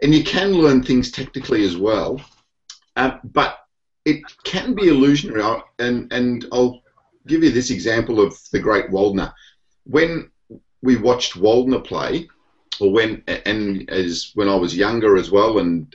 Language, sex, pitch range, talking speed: English, male, 100-140 Hz, 160 wpm